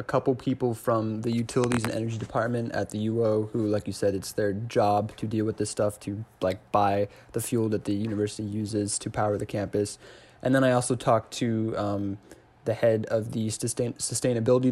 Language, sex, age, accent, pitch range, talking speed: English, male, 20-39, American, 105-120 Hz, 200 wpm